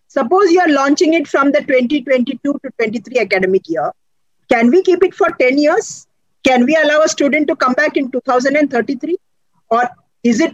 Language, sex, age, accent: English, female, 50-69, Indian